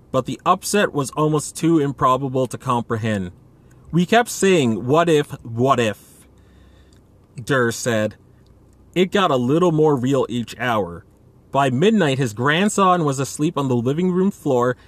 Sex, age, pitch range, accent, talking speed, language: male, 30-49, 115-155 Hz, American, 150 wpm, English